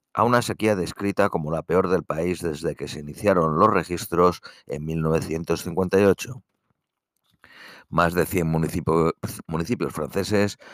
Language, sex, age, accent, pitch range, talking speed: Spanish, male, 50-69, Spanish, 85-105 Hz, 125 wpm